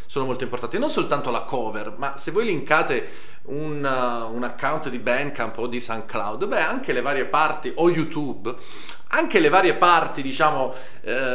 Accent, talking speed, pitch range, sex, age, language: native, 175 wpm, 115-170 Hz, male, 30-49, Italian